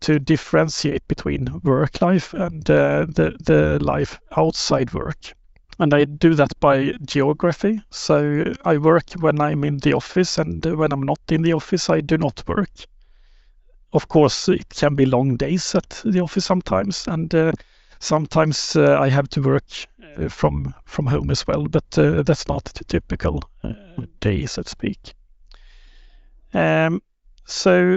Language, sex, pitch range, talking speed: English, male, 140-175 Hz, 160 wpm